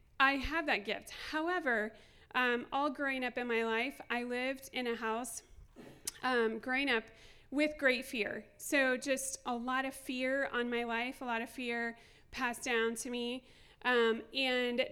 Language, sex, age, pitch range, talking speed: English, female, 30-49, 235-280 Hz, 170 wpm